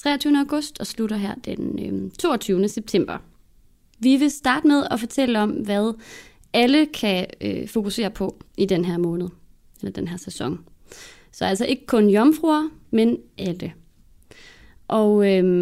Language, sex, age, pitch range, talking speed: English, female, 20-39, 185-245 Hz, 140 wpm